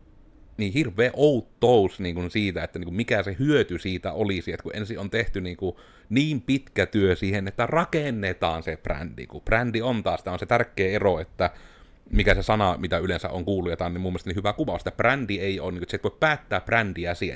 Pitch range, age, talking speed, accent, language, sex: 90-105 Hz, 30-49, 225 wpm, native, Finnish, male